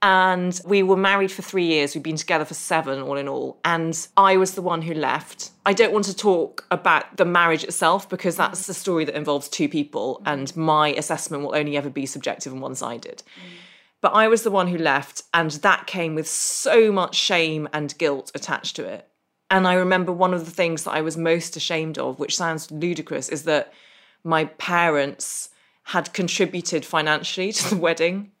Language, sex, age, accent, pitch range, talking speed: English, female, 20-39, British, 150-185 Hz, 200 wpm